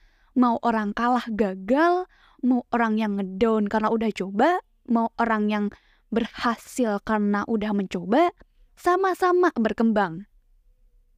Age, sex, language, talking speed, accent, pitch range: 20-39, female, Indonesian, 105 wpm, native, 210-300 Hz